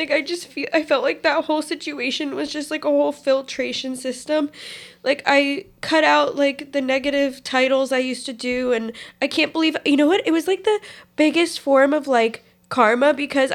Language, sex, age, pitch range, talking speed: English, female, 10-29, 220-275 Hz, 205 wpm